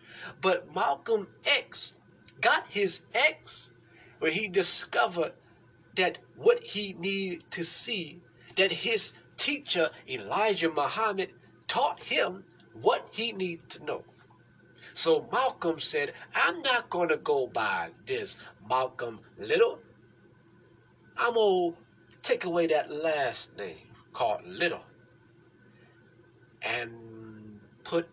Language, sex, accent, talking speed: English, male, American, 110 wpm